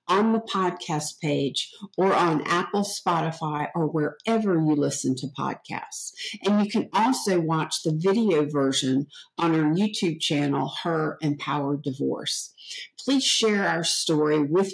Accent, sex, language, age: American, female, English, 50-69